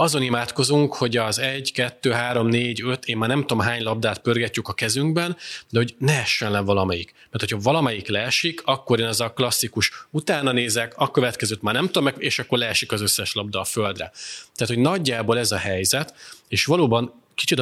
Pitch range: 105-130 Hz